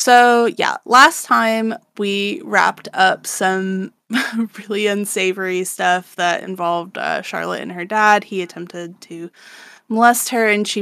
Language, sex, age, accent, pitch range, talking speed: English, female, 20-39, American, 175-205 Hz, 140 wpm